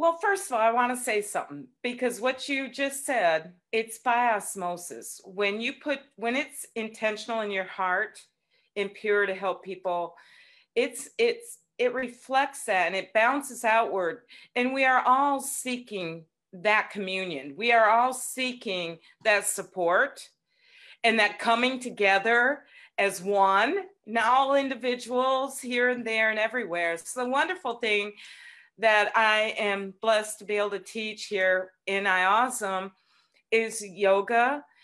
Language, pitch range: English, 200-260 Hz